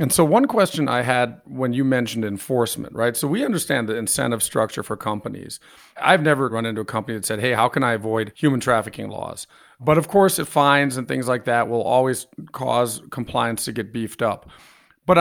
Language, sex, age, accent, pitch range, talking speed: English, male, 50-69, American, 115-145 Hz, 210 wpm